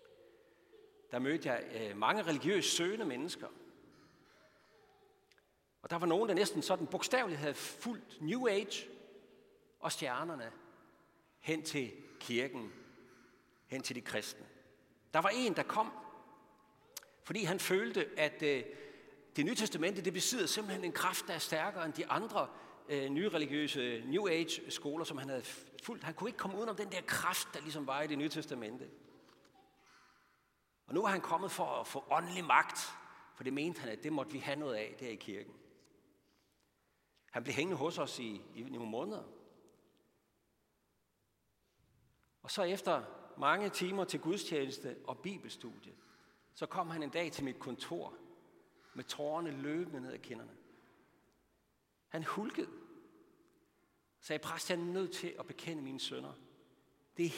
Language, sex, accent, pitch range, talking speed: Danish, male, native, 150-250 Hz, 155 wpm